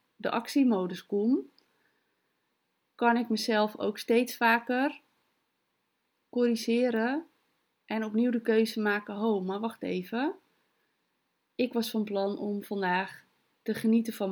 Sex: female